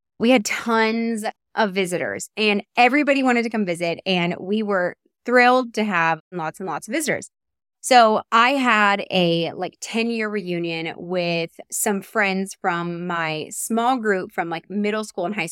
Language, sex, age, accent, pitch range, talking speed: English, female, 20-39, American, 175-230 Hz, 165 wpm